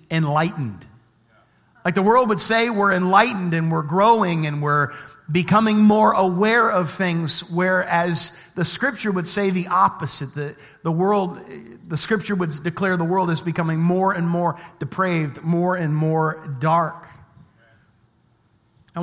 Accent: American